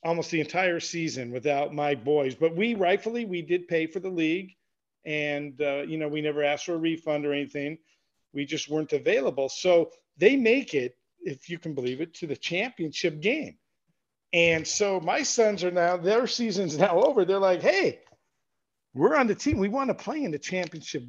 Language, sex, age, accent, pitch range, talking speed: English, male, 50-69, American, 150-210 Hz, 195 wpm